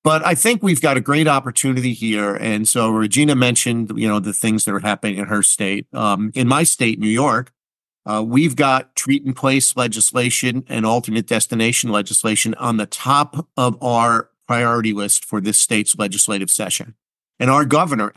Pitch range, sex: 110-135 Hz, male